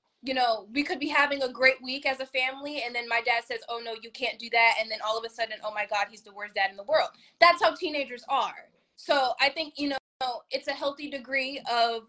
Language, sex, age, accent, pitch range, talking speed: English, female, 20-39, American, 230-275 Hz, 265 wpm